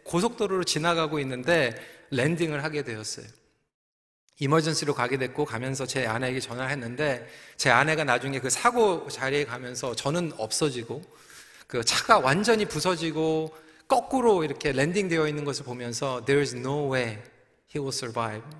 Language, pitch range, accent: Korean, 130-175 Hz, native